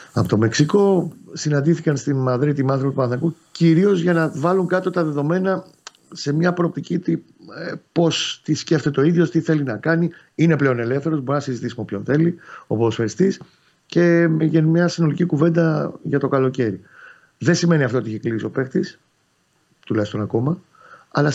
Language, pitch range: Greek, 120-155 Hz